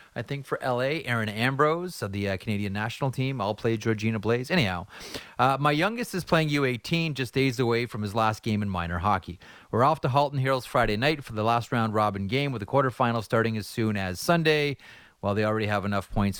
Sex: male